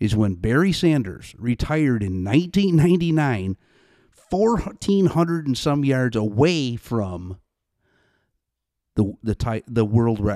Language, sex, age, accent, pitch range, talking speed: English, male, 50-69, American, 105-160 Hz, 100 wpm